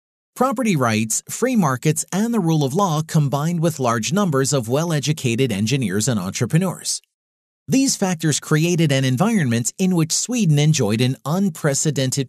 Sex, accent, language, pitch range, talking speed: male, American, English, 130-185 Hz, 140 wpm